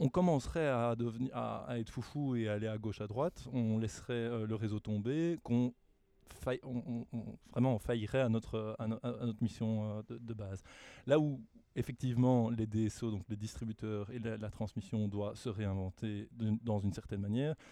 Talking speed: 195 wpm